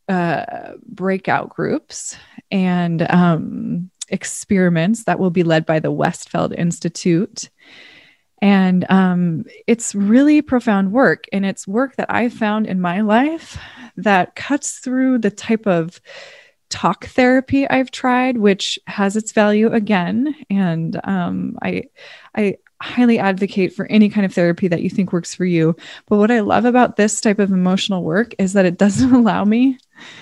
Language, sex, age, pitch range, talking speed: English, female, 20-39, 185-230 Hz, 155 wpm